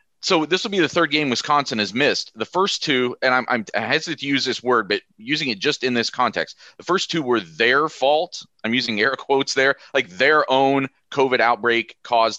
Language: English